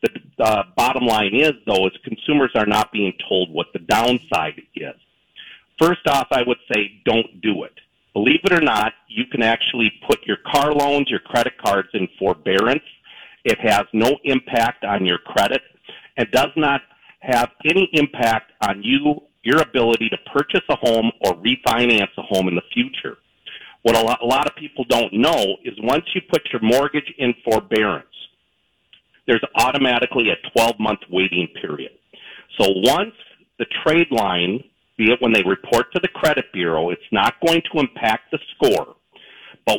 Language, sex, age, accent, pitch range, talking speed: English, male, 50-69, American, 110-145 Hz, 170 wpm